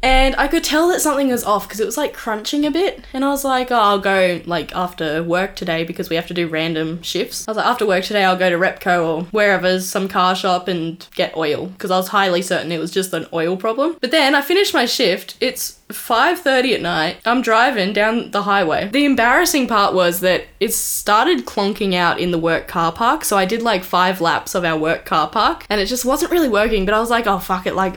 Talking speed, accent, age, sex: 250 wpm, Australian, 10-29, female